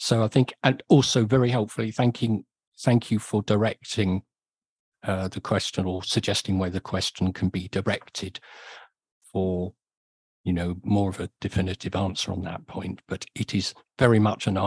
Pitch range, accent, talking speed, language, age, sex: 100-120 Hz, British, 165 wpm, English, 50-69, male